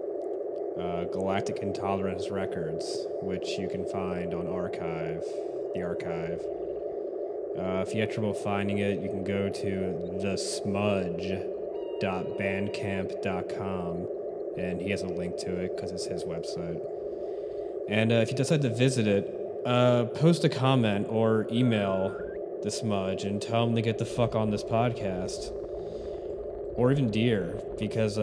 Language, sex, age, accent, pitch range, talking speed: English, male, 20-39, American, 95-115 Hz, 140 wpm